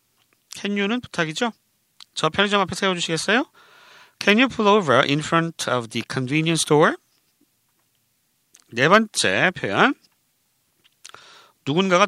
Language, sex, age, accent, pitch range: Korean, male, 40-59, native, 125-200 Hz